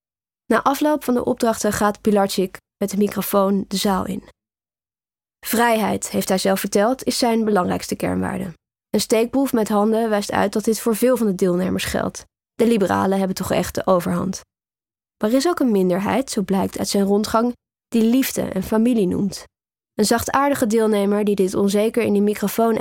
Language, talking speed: Dutch, 180 wpm